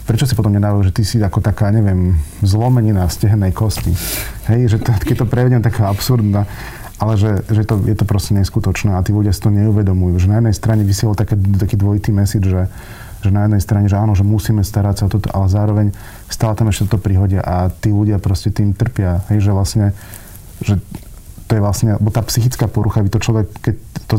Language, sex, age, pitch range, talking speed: Slovak, male, 30-49, 100-110 Hz, 210 wpm